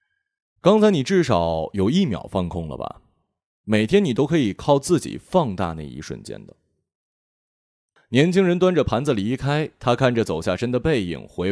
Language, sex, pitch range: Chinese, male, 95-135 Hz